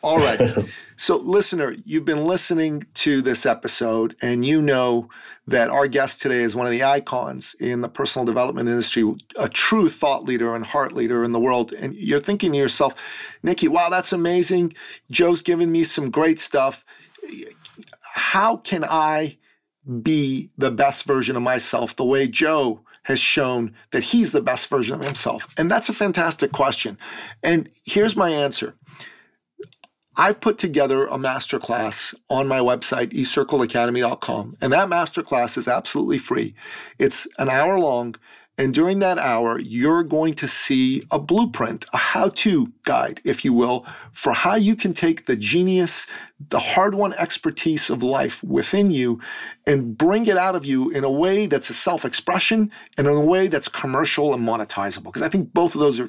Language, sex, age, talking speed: English, male, 40-59, 170 wpm